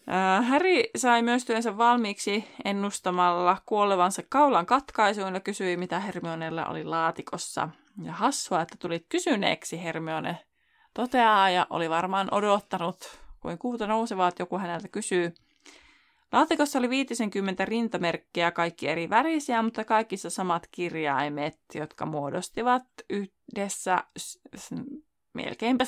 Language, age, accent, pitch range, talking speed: Finnish, 20-39, native, 170-240 Hz, 115 wpm